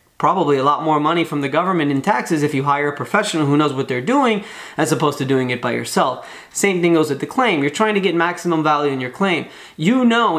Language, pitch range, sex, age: English, 145-190 Hz, male, 20-39